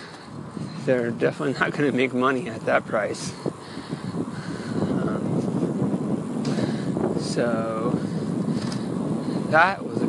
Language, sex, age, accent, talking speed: English, male, 30-49, American, 90 wpm